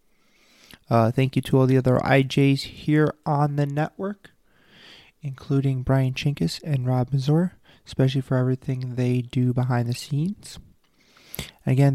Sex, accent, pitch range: male, American, 120-145 Hz